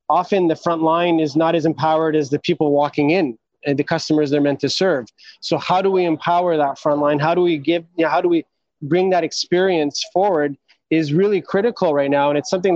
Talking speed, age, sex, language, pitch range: 230 wpm, 20-39, male, English, 150-175 Hz